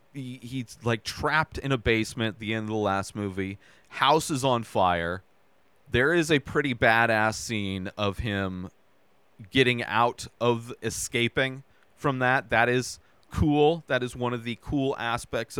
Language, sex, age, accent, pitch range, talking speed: English, male, 30-49, American, 100-130 Hz, 160 wpm